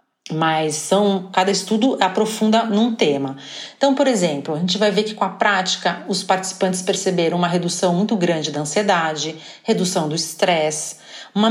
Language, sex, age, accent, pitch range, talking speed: Portuguese, female, 40-59, Brazilian, 175-230 Hz, 155 wpm